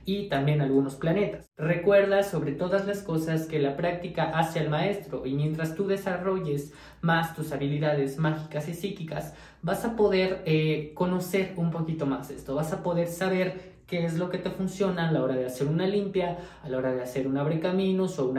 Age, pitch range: 20-39, 140-185 Hz